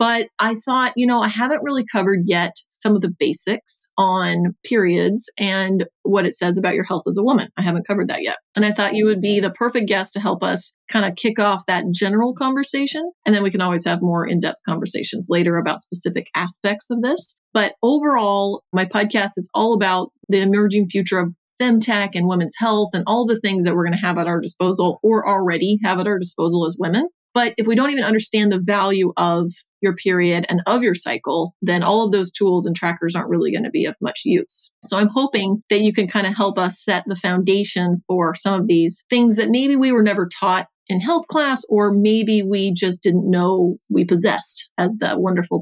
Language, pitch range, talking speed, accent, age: English, 185-225 Hz, 220 wpm, American, 30-49